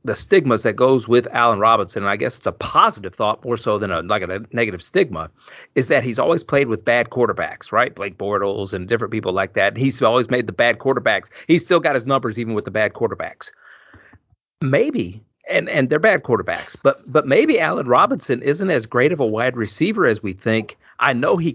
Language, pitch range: English, 110-155 Hz